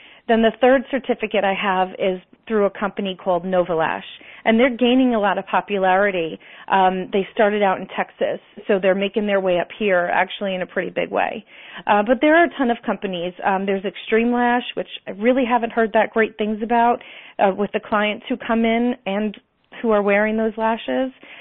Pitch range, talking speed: 195-235 Hz, 205 wpm